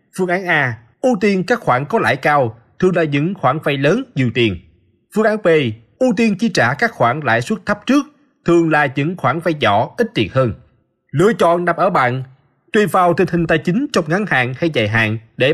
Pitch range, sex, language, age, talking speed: 130-190 Hz, male, Vietnamese, 20-39, 225 wpm